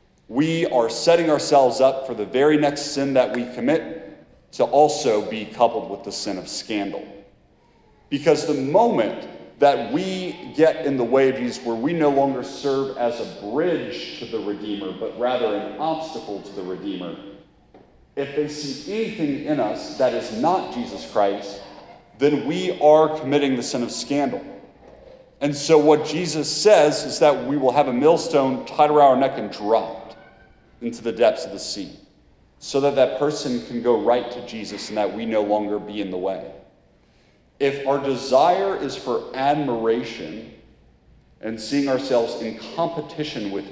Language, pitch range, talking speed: English, 115-150 Hz, 170 wpm